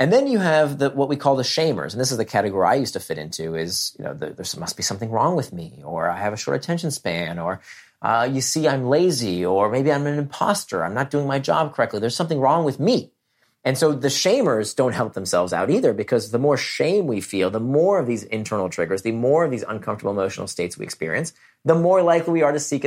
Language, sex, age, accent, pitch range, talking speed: English, male, 30-49, American, 110-150 Hz, 250 wpm